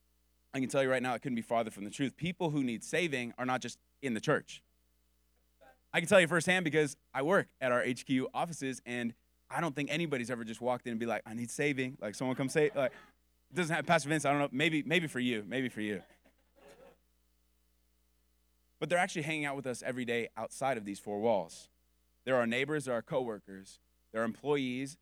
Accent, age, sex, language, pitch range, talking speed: American, 20-39, male, English, 105-140 Hz, 225 wpm